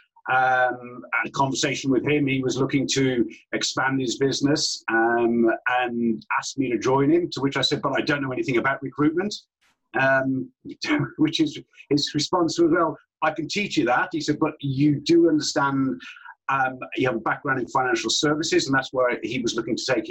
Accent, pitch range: British, 130-160 Hz